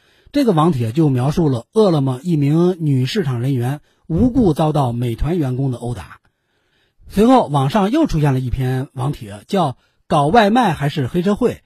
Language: Chinese